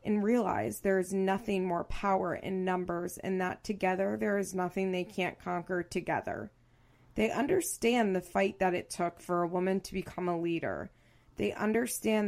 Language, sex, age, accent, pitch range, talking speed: English, female, 20-39, American, 175-215 Hz, 170 wpm